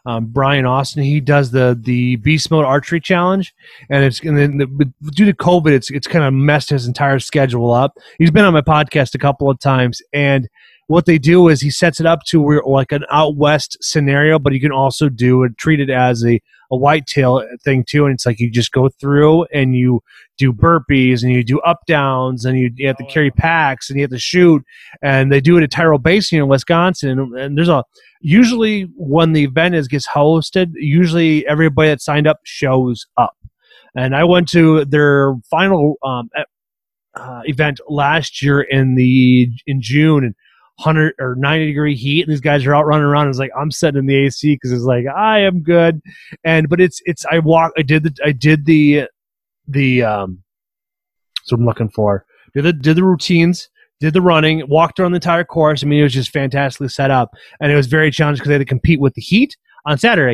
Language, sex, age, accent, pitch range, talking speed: English, male, 30-49, American, 135-160 Hz, 215 wpm